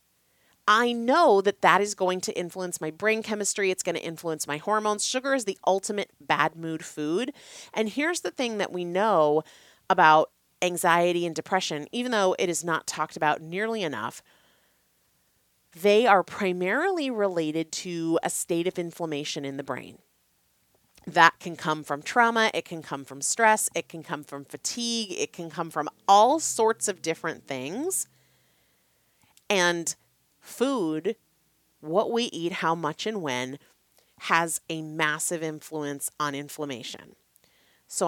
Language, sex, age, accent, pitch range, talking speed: English, female, 30-49, American, 150-195 Hz, 150 wpm